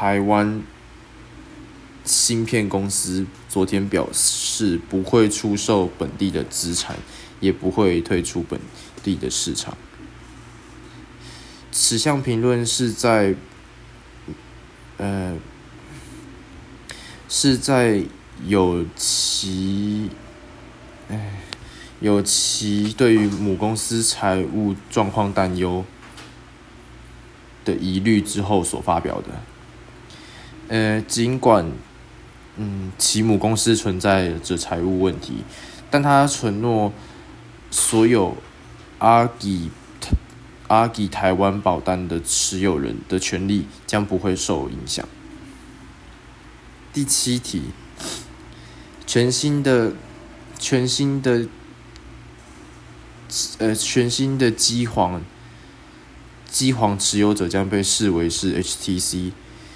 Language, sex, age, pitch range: English, male, 20-39, 95-115 Hz